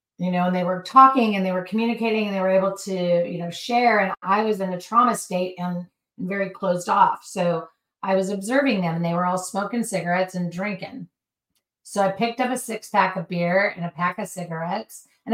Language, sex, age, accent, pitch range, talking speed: English, female, 30-49, American, 175-200 Hz, 225 wpm